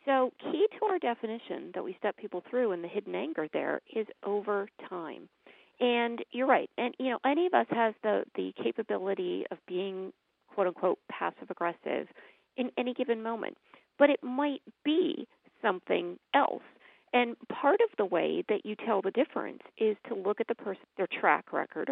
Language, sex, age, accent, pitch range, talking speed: English, female, 40-59, American, 185-275 Hz, 180 wpm